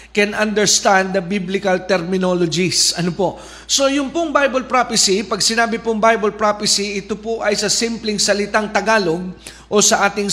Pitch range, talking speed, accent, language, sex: 195-230 Hz, 155 wpm, native, Filipino, male